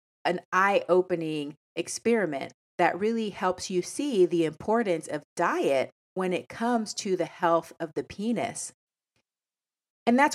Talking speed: 140 wpm